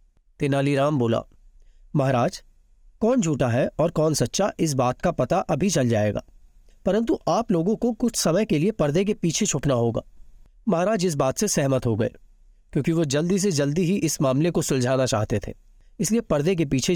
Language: Hindi